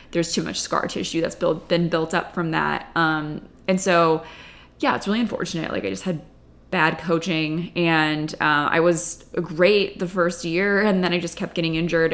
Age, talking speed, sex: 20-39, 195 wpm, female